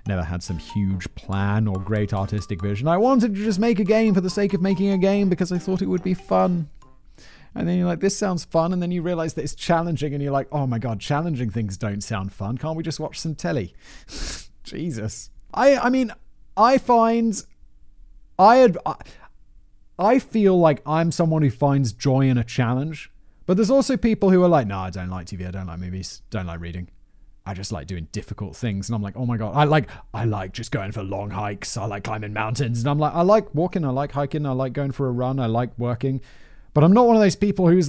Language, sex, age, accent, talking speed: English, male, 30-49, British, 235 wpm